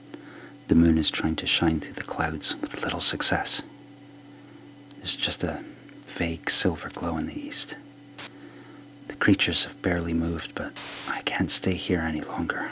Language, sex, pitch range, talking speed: English, male, 95-140 Hz, 155 wpm